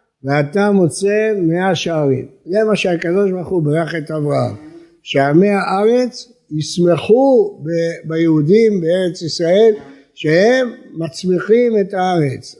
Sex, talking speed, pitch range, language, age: male, 105 wpm, 155-205 Hz, Hebrew, 60-79